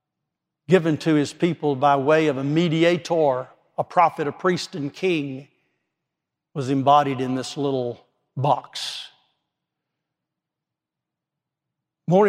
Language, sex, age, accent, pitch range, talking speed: English, male, 60-79, American, 140-165 Hz, 105 wpm